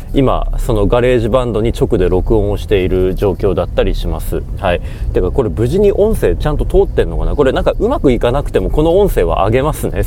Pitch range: 95-145 Hz